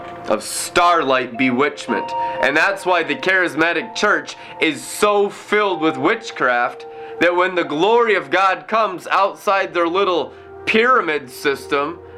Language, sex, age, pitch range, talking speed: English, male, 20-39, 160-220 Hz, 130 wpm